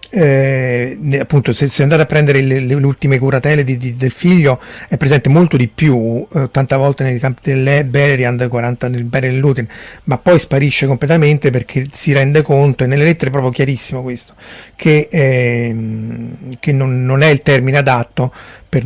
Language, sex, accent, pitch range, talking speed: Italian, male, native, 125-145 Hz, 180 wpm